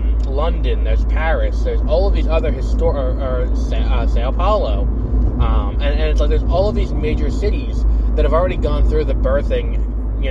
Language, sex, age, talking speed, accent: English, male, 20-39, 190 wpm, American